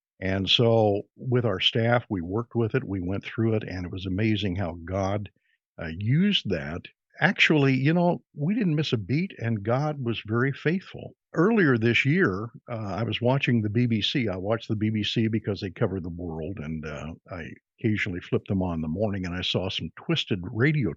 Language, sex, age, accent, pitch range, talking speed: English, male, 50-69, American, 105-140 Hz, 195 wpm